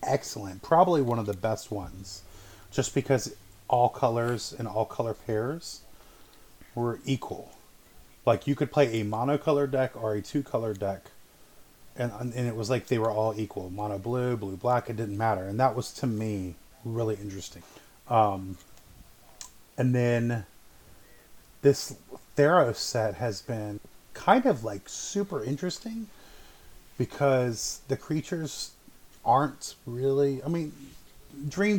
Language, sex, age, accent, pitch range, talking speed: English, male, 30-49, American, 105-140 Hz, 140 wpm